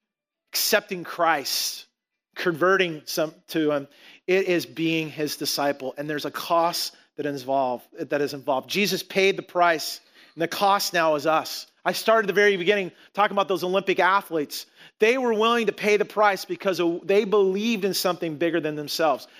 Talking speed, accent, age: 180 wpm, American, 40-59